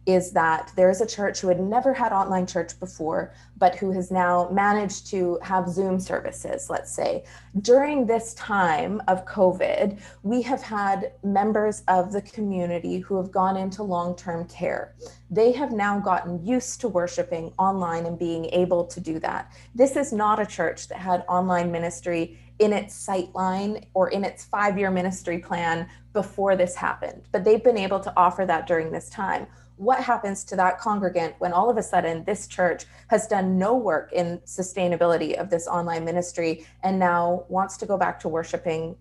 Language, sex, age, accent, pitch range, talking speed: English, female, 20-39, American, 175-205 Hz, 180 wpm